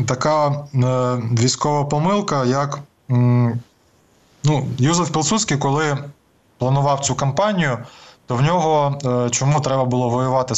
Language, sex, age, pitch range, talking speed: Ukrainian, male, 20-39, 120-140 Hz, 100 wpm